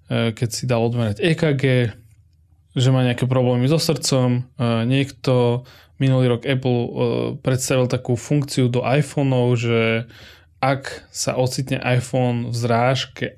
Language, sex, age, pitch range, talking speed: Slovak, male, 20-39, 115-130 Hz, 120 wpm